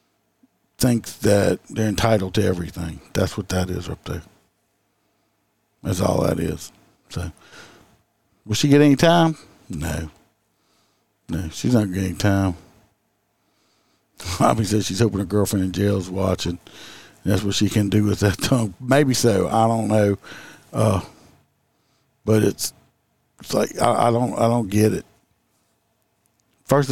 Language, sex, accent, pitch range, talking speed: English, male, American, 95-115 Hz, 140 wpm